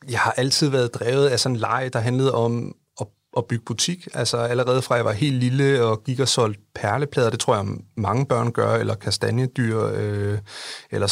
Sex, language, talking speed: male, English, 205 wpm